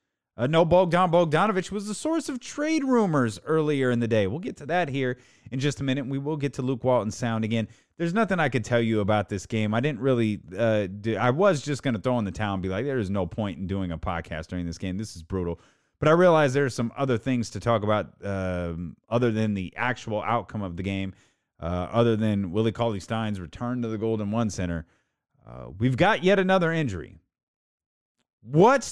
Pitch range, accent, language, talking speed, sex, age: 100-140 Hz, American, English, 225 wpm, male, 30-49